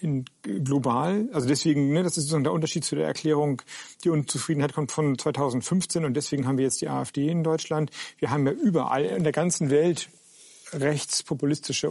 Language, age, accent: German, 40-59, German